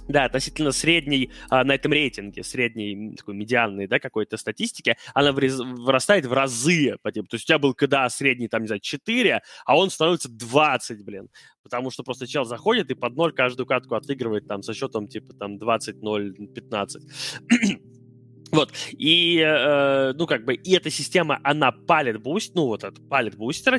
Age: 20-39